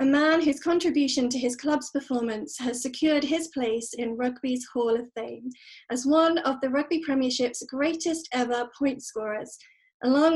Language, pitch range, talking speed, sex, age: English, 245-300 Hz, 160 wpm, female, 30-49